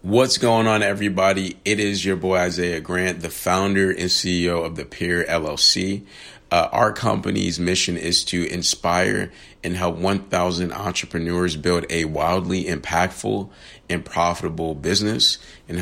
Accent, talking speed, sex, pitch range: American, 140 wpm, male, 85-95 Hz